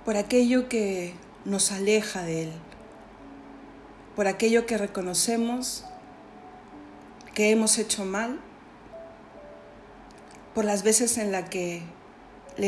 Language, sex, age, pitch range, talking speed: Spanish, female, 40-59, 205-255 Hz, 105 wpm